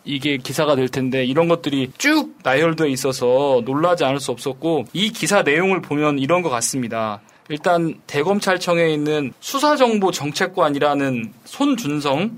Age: 20-39